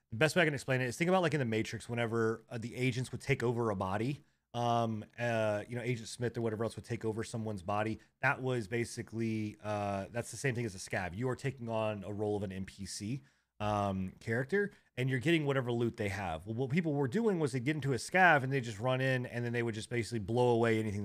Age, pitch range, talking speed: 30-49, 110-130 Hz, 260 wpm